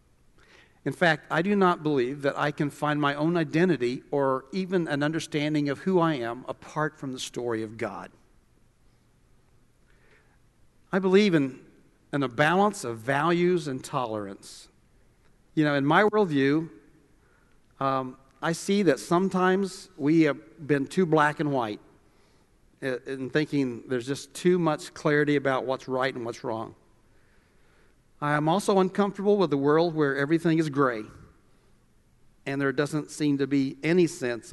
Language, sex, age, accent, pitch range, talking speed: English, male, 50-69, American, 130-165 Hz, 150 wpm